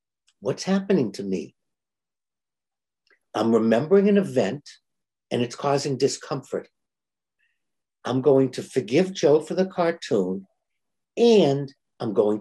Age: 60-79